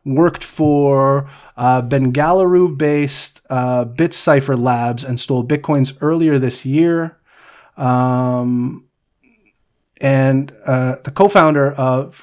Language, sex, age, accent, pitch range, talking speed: English, male, 30-49, American, 130-155 Hz, 100 wpm